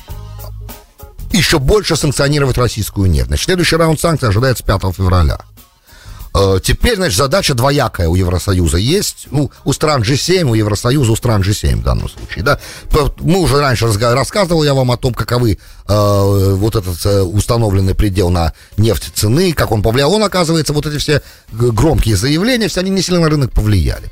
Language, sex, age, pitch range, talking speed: English, male, 50-69, 100-150 Hz, 170 wpm